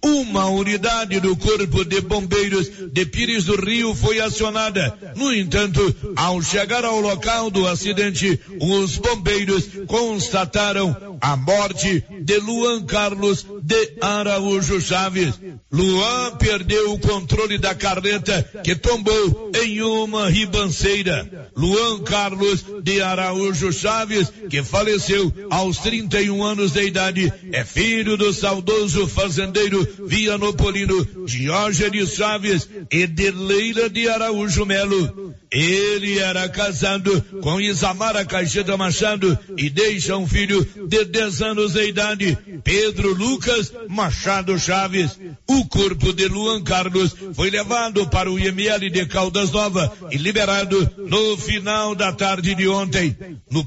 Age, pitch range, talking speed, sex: 60-79, 185-210 Hz, 125 wpm, male